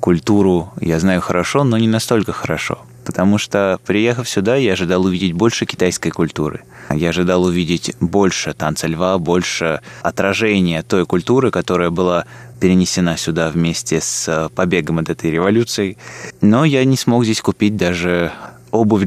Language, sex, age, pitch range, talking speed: Russian, male, 20-39, 85-105 Hz, 145 wpm